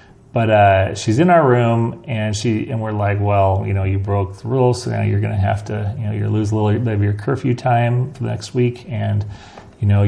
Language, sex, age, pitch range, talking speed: English, male, 30-49, 105-125 Hz, 250 wpm